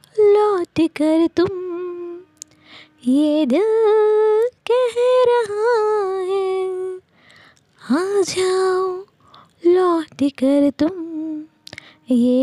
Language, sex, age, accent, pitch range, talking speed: Hindi, female, 20-39, native, 335-415 Hz, 65 wpm